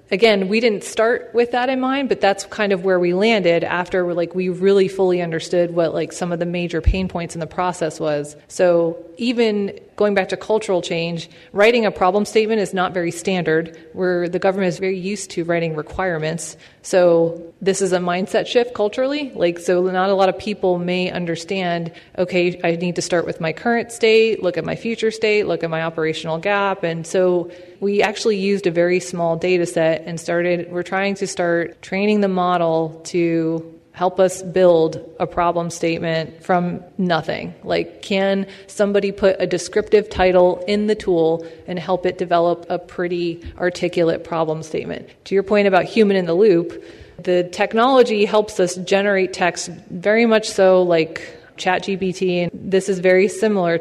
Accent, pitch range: American, 170-200 Hz